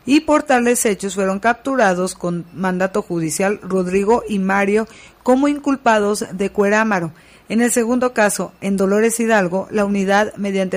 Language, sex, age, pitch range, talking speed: Spanish, female, 50-69, 185-220 Hz, 145 wpm